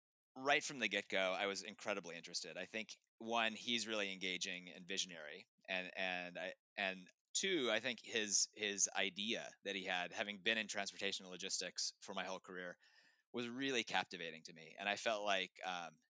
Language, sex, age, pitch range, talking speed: English, male, 30-49, 90-110 Hz, 180 wpm